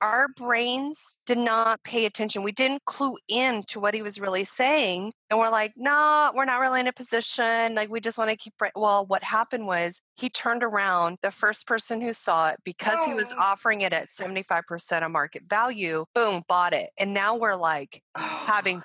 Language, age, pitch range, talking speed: English, 30-49, 180-230 Hz, 200 wpm